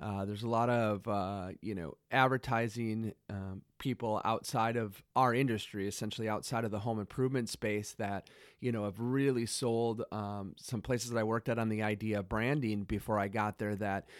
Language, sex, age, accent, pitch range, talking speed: English, male, 30-49, American, 110-130 Hz, 190 wpm